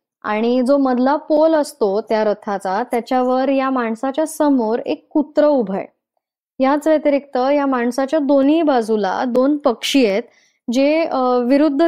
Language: Marathi